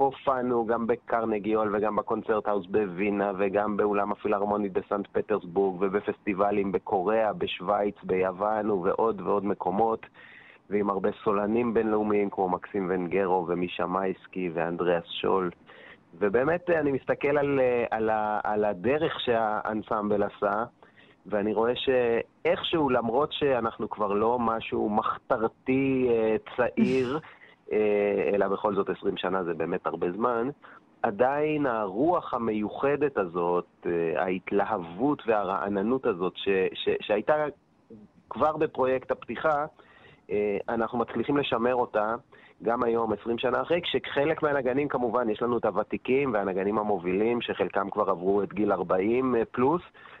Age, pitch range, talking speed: 30-49, 100-130 Hz, 115 wpm